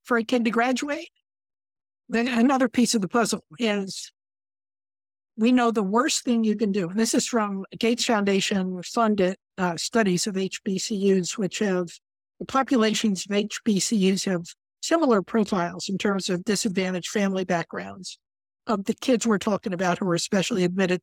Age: 60-79